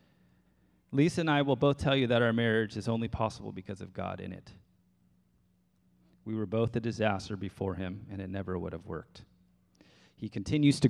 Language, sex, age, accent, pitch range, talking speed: English, male, 30-49, American, 90-120 Hz, 185 wpm